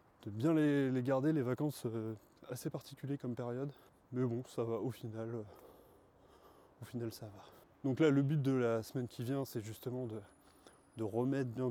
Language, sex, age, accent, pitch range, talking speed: French, male, 20-39, French, 115-140 Hz, 195 wpm